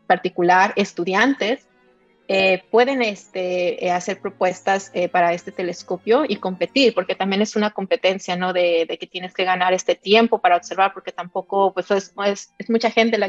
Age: 30-49